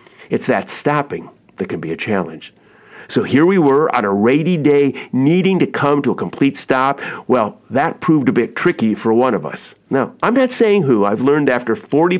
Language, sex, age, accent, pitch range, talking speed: English, male, 50-69, American, 115-160 Hz, 205 wpm